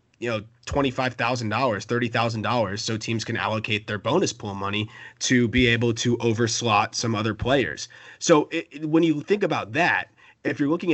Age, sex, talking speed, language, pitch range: 30-49, male, 170 wpm, English, 115-145 Hz